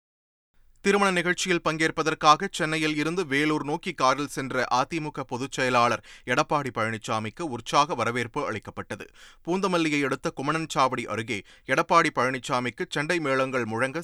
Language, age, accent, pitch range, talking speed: Tamil, 30-49, native, 120-165 Hz, 110 wpm